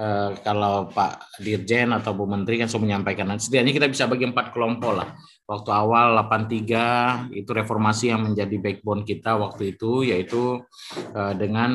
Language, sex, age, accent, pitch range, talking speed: Indonesian, male, 20-39, native, 105-125 Hz, 160 wpm